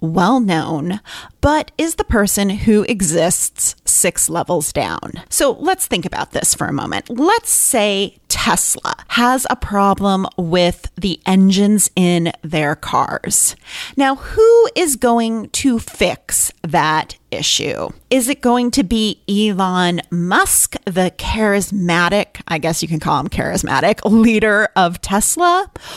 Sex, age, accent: female, 30-49, American